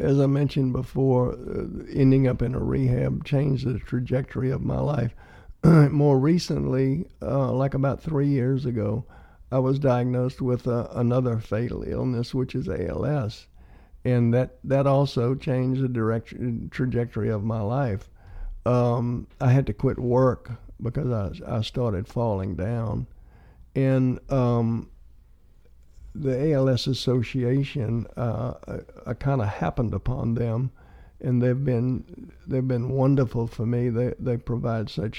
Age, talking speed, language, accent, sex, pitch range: 60-79, 140 wpm, English, American, male, 110-130 Hz